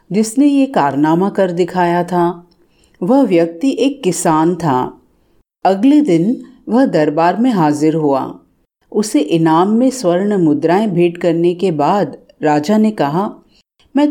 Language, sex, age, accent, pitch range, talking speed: Hindi, female, 40-59, native, 165-255 Hz, 130 wpm